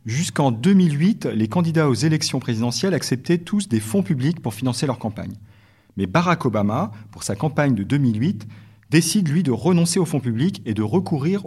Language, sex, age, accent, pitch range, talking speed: French, male, 40-59, French, 110-160 Hz, 180 wpm